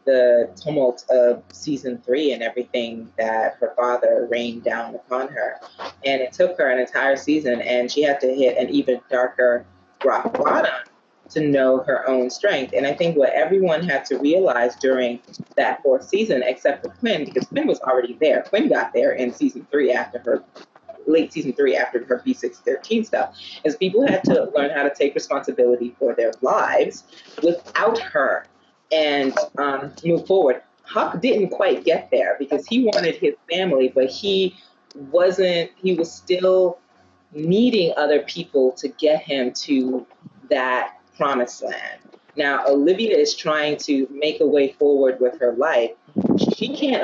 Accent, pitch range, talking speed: American, 125-190 Hz, 165 wpm